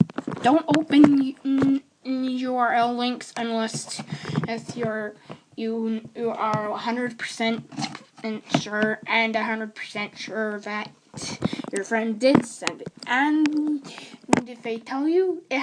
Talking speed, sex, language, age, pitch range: 110 wpm, female, English, 10-29, 220-270 Hz